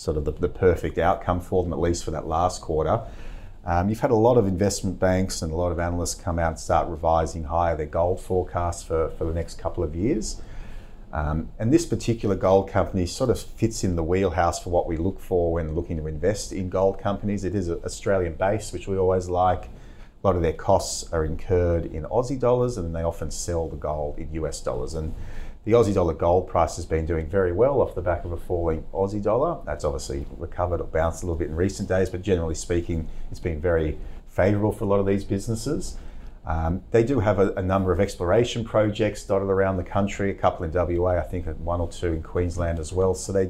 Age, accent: 30-49, Australian